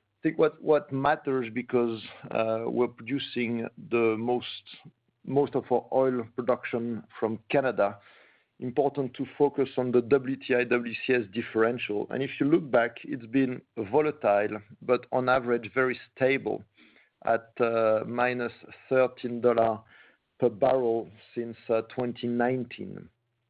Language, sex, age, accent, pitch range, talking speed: English, male, 50-69, French, 115-135 Hz, 115 wpm